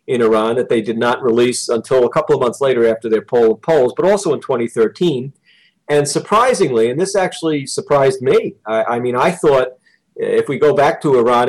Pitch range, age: 115-175 Hz, 40-59